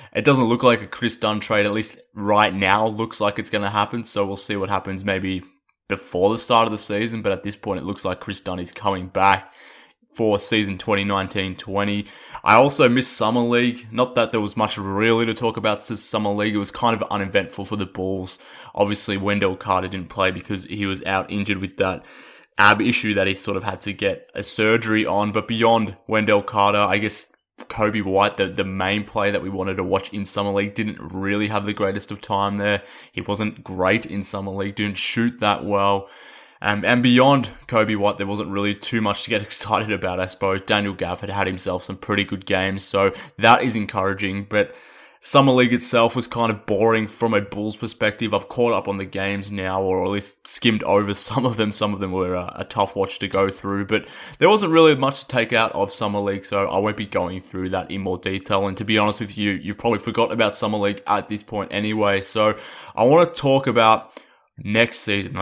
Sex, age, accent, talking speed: male, 20-39, Australian, 225 wpm